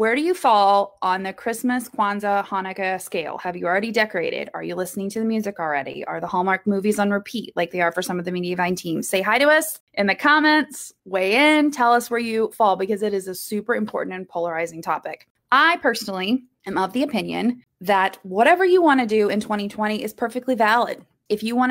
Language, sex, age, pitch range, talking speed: English, female, 20-39, 200-275 Hz, 220 wpm